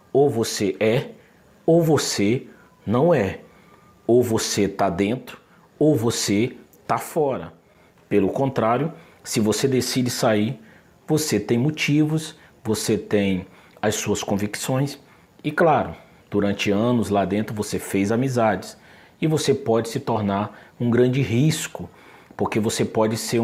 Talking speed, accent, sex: 130 wpm, Brazilian, male